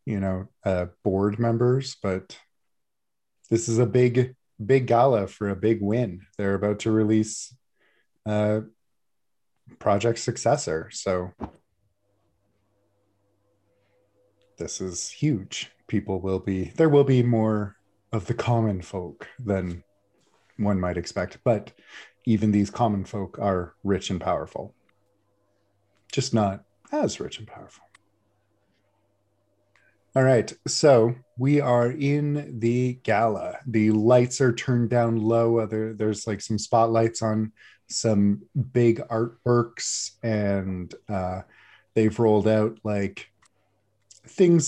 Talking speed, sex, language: 115 wpm, male, English